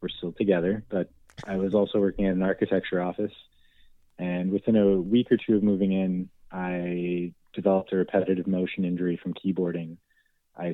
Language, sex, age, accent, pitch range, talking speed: English, male, 20-39, American, 90-105 Hz, 170 wpm